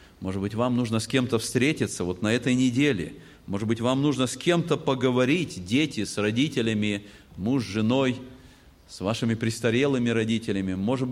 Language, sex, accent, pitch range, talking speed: Russian, male, native, 115-185 Hz, 150 wpm